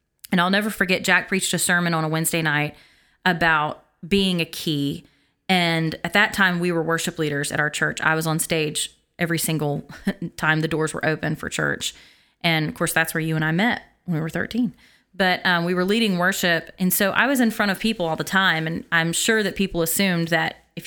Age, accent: 30-49, American